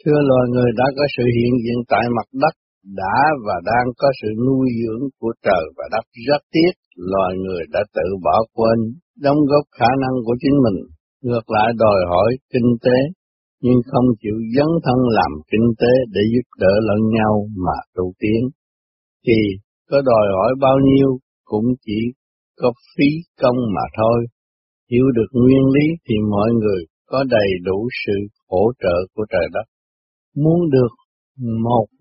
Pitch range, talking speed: 100-130 Hz, 170 wpm